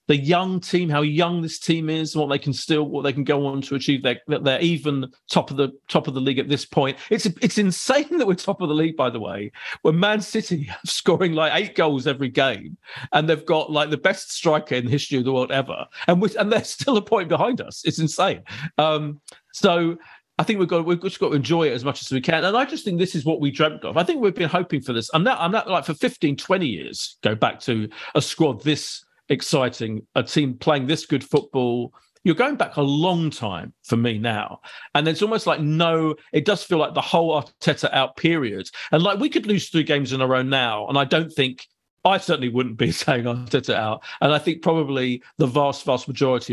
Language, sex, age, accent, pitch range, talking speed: English, male, 40-59, British, 130-170 Hz, 245 wpm